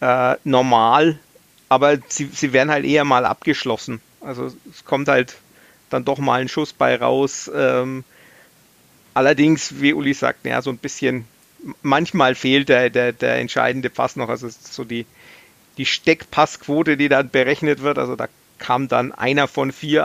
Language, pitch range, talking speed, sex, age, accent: German, 125-150 Hz, 160 wpm, male, 40-59, German